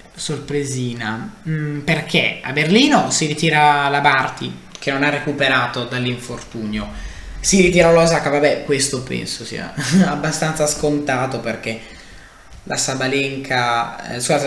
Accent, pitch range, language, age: native, 125-155 Hz, Italian, 20-39